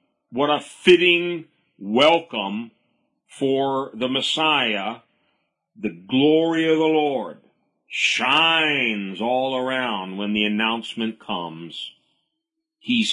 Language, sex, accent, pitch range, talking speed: English, male, American, 115-160 Hz, 90 wpm